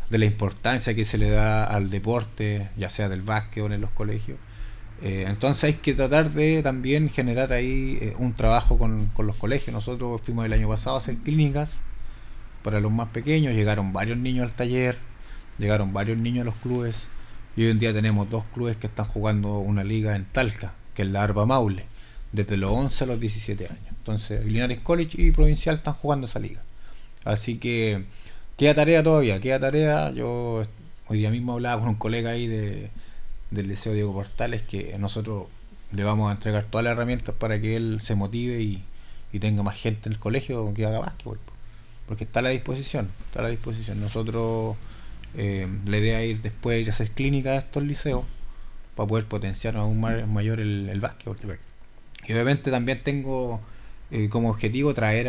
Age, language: 30-49, Spanish